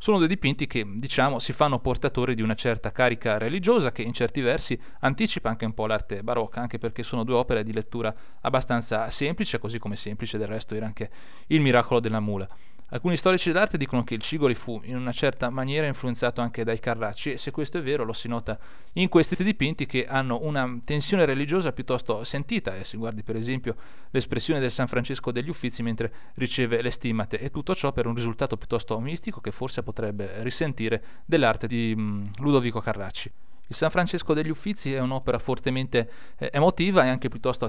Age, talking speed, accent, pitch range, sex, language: 30-49, 195 wpm, native, 115-140 Hz, male, Italian